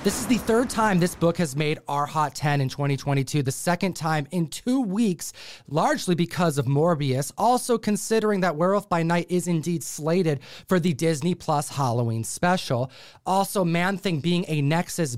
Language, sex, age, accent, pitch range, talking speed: English, male, 30-49, American, 140-195 Hz, 180 wpm